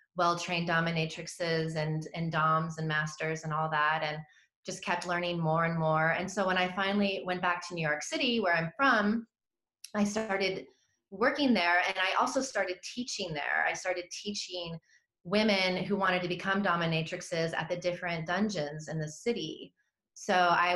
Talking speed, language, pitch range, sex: 170 wpm, English, 165-195 Hz, female